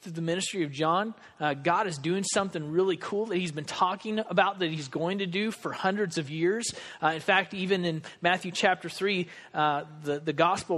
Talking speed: 205 wpm